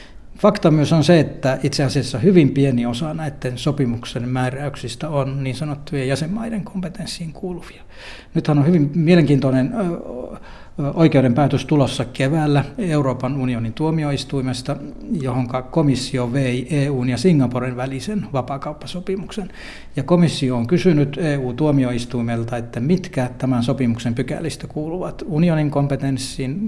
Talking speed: 110 wpm